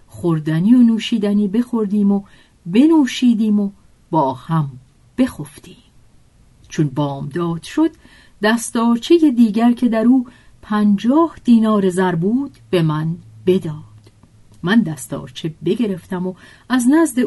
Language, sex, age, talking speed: Persian, female, 40-59, 110 wpm